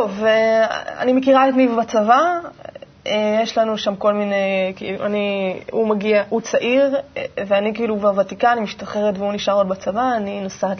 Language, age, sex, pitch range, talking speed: Hebrew, 20-39, female, 210-275 Hz, 145 wpm